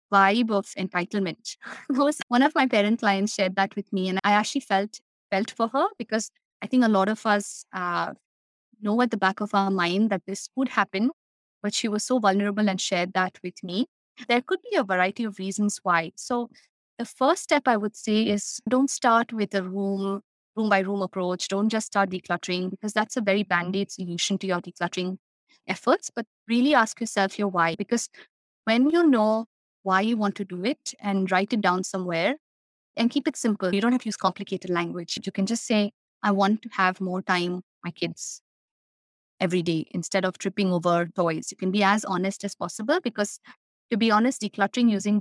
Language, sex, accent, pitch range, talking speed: English, female, Indian, 190-225 Hz, 205 wpm